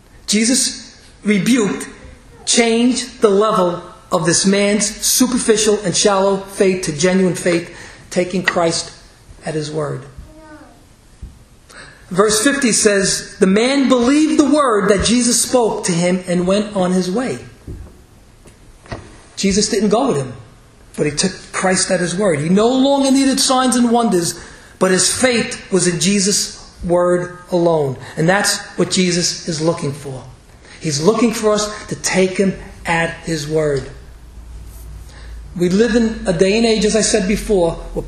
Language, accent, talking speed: English, American, 150 wpm